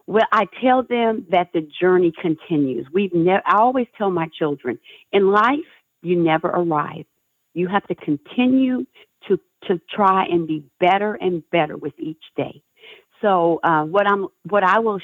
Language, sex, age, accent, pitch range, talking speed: English, female, 50-69, American, 160-205 Hz, 170 wpm